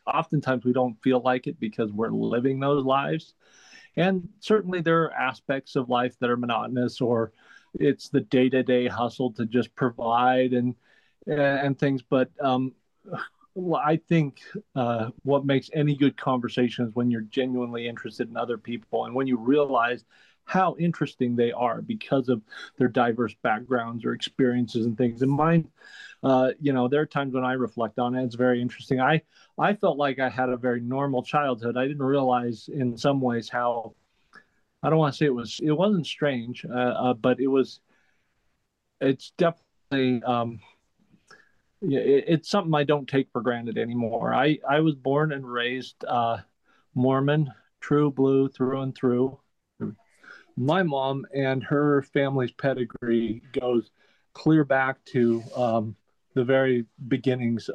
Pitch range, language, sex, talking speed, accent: 120-140 Hz, English, male, 160 wpm, American